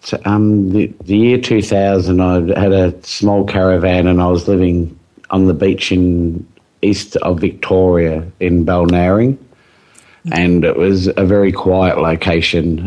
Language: English